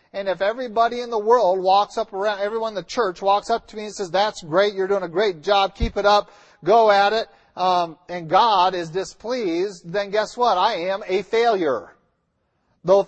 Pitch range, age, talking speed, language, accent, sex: 160-210 Hz, 50-69, 205 wpm, English, American, male